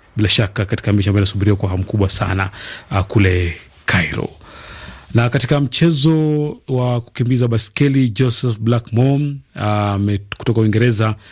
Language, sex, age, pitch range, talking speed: Swahili, male, 40-59, 100-120 Hz, 120 wpm